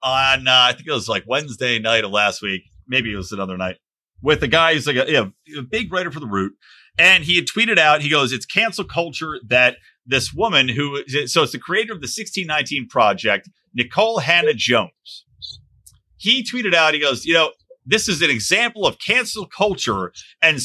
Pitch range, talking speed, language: 125-195 Hz, 205 wpm, English